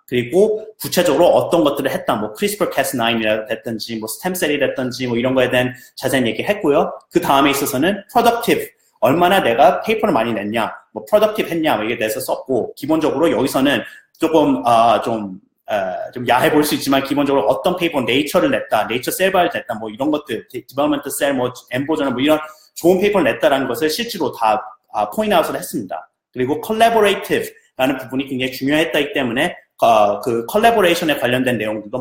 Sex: male